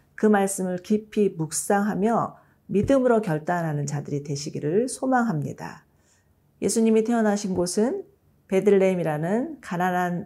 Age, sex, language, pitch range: 40-59, female, Korean, 165-215 Hz